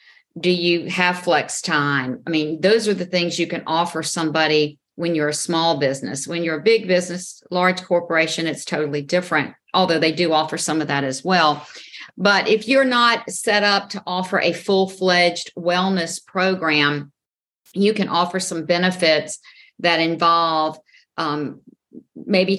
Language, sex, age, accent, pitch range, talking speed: English, female, 50-69, American, 160-195 Hz, 160 wpm